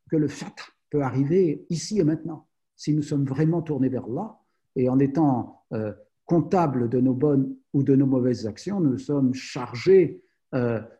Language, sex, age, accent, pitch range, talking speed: French, male, 50-69, French, 115-150 Hz, 175 wpm